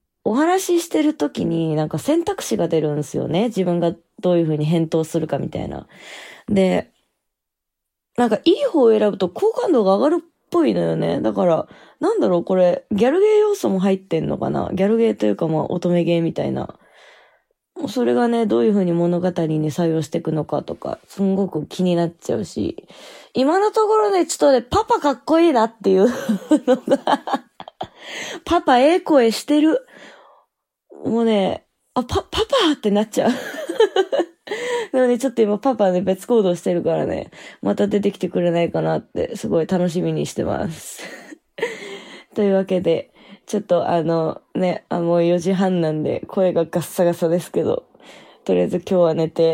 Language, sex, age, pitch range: Japanese, female, 20-39, 170-275 Hz